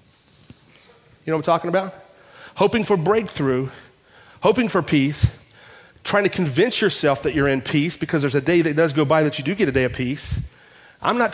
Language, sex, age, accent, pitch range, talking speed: English, male, 40-59, American, 145-190 Hz, 195 wpm